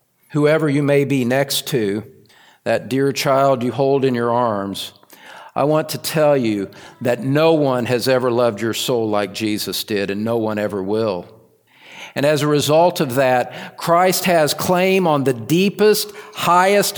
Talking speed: 170 wpm